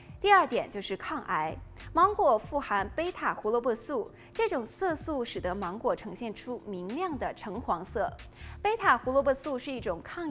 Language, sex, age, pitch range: Chinese, female, 20-39, 210-350 Hz